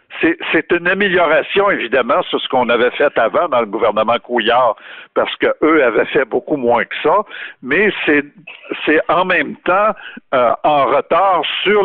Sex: male